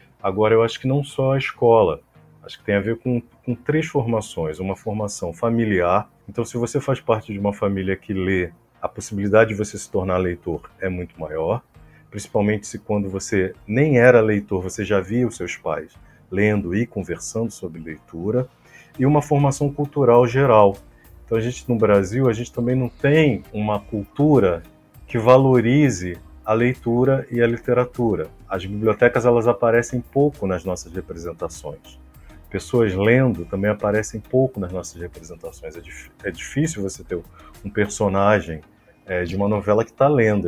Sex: male